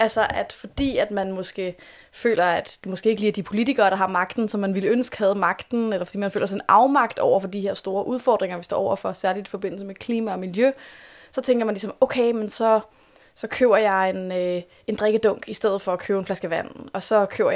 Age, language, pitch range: 20-39, Danish, 195-240 Hz